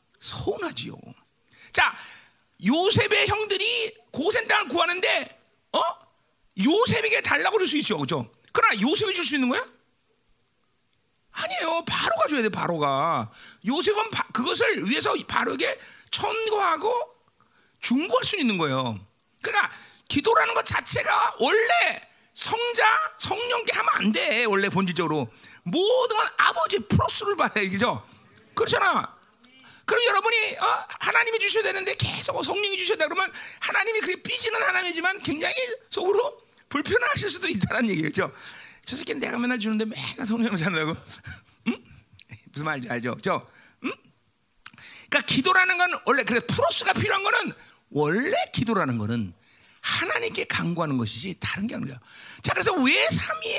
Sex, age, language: male, 40-59, Korean